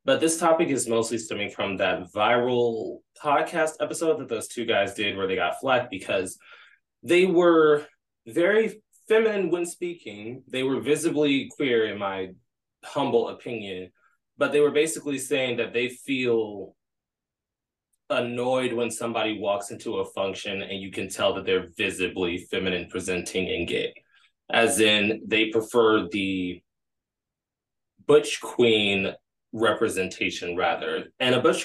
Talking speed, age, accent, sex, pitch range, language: 140 wpm, 20-39, American, male, 100-140 Hz, English